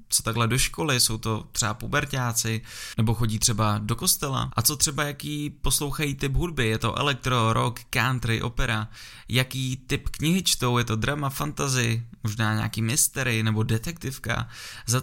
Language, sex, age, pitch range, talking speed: Czech, male, 20-39, 110-135 Hz, 160 wpm